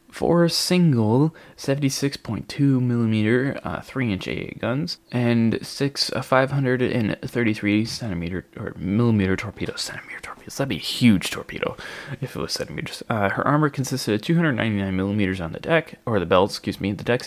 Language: English